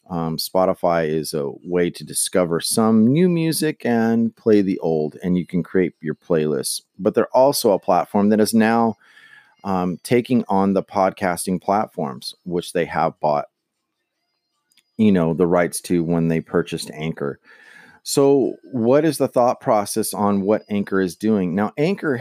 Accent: American